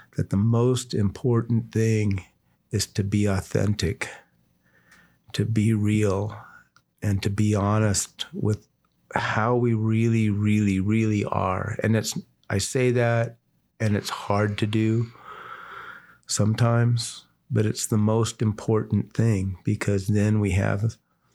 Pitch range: 100-115 Hz